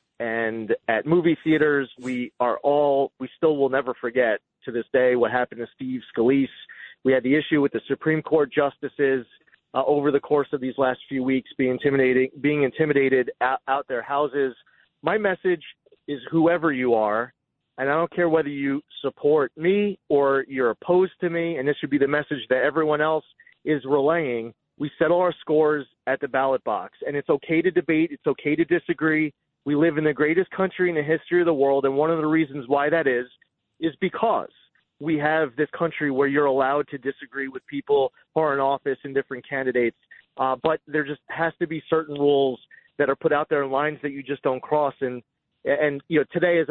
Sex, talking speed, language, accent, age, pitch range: male, 205 wpm, English, American, 30-49, 135-160 Hz